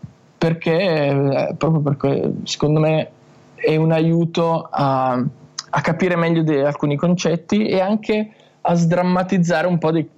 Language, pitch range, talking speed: Italian, 130-160 Hz, 130 wpm